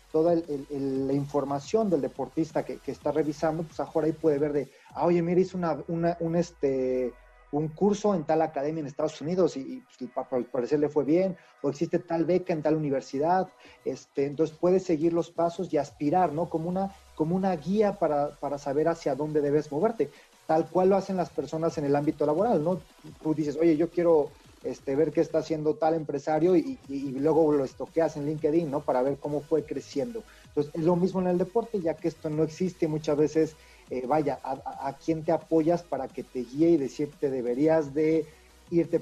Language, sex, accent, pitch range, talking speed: Spanish, male, Mexican, 140-170 Hz, 210 wpm